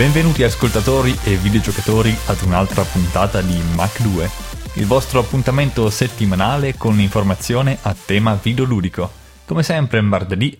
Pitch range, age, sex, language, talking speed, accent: 95-115 Hz, 20-39, male, Italian, 125 wpm, native